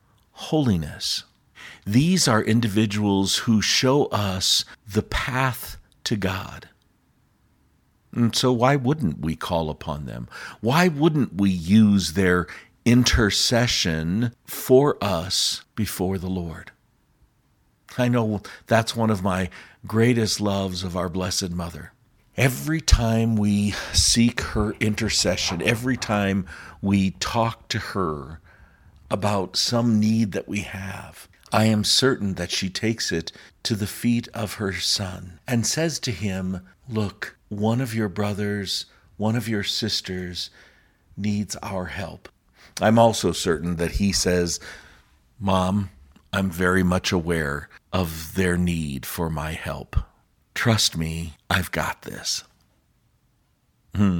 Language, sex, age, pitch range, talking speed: English, male, 50-69, 90-115 Hz, 125 wpm